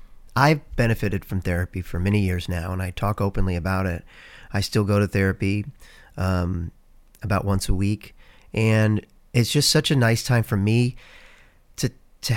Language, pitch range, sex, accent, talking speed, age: English, 95-125 Hz, male, American, 170 wpm, 40-59